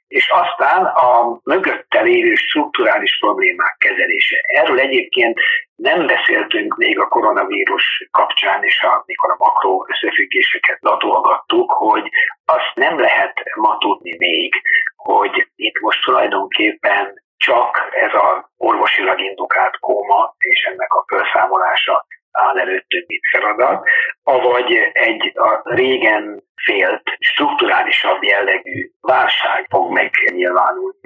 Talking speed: 110 wpm